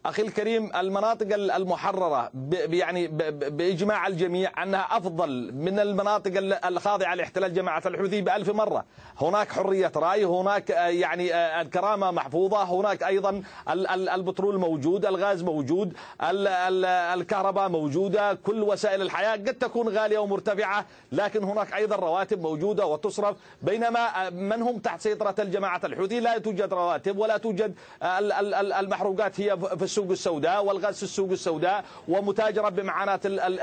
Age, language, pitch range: 40-59, Arabic, 190-220 Hz